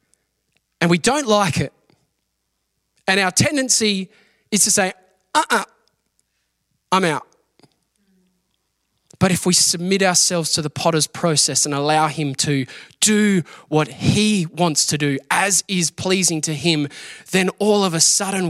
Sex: male